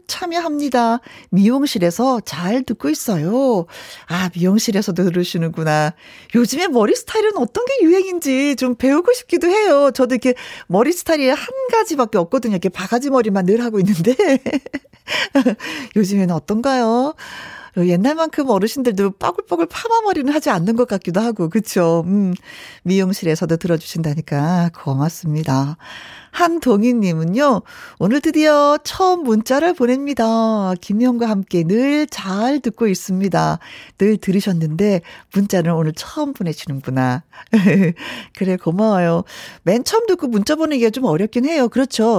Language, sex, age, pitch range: Korean, female, 40-59, 175-270 Hz